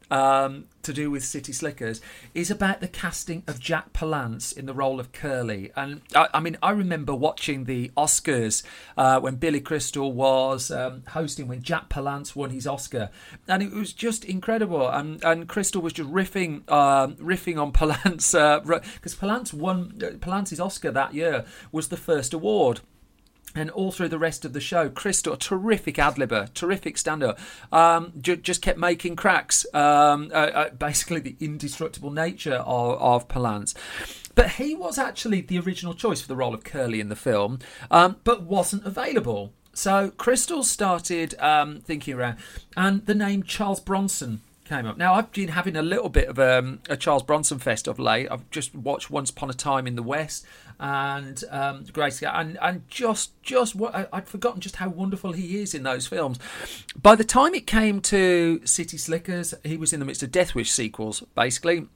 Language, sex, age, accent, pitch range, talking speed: English, male, 40-59, British, 135-185 Hz, 185 wpm